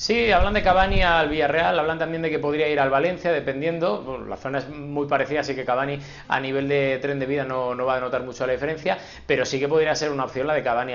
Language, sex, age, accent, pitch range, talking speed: Spanish, male, 20-39, Spanish, 130-165 Hz, 265 wpm